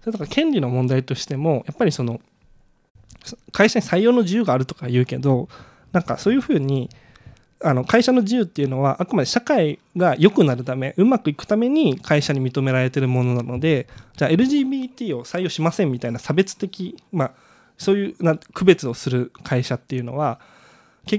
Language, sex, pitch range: Japanese, male, 130-195 Hz